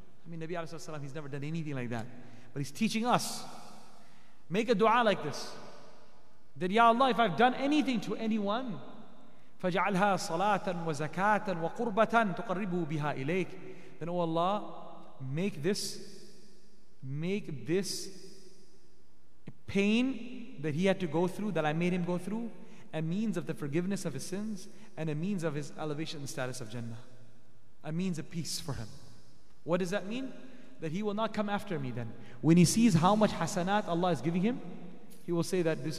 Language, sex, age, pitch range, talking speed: English, male, 30-49, 145-195 Hz, 175 wpm